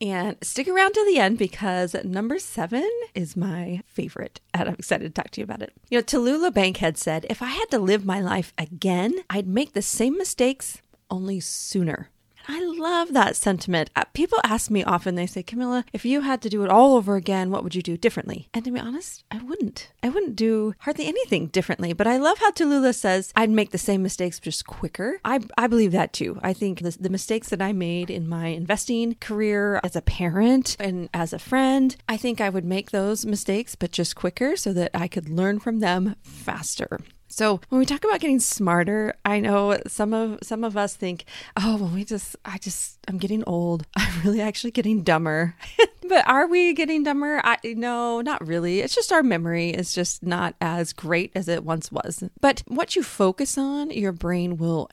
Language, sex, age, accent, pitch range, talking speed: English, female, 30-49, American, 180-250 Hz, 210 wpm